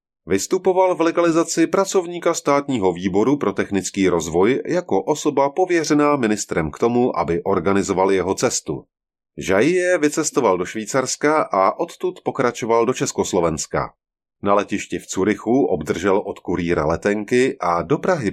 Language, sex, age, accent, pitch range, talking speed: Czech, male, 30-49, native, 95-150 Hz, 130 wpm